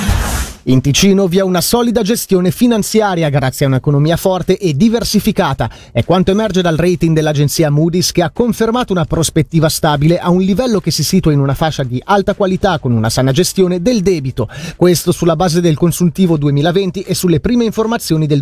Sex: male